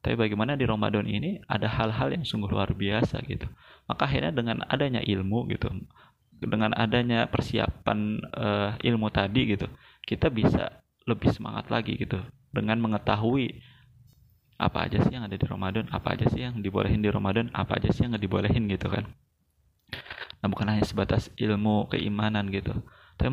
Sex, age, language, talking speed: male, 20-39, Indonesian, 160 wpm